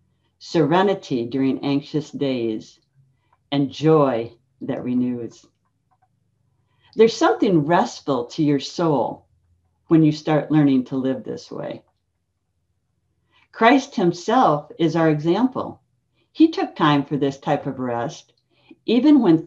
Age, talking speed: 60-79, 115 wpm